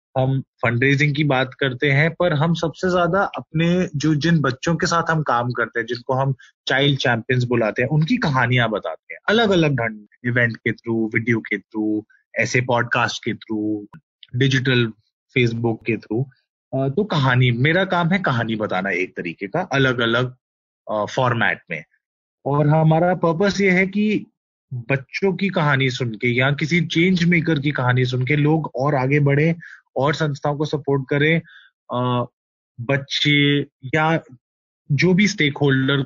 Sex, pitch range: male, 120-160 Hz